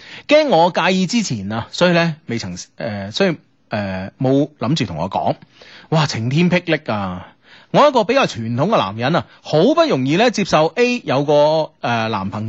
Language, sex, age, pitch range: Chinese, male, 30-49, 120-190 Hz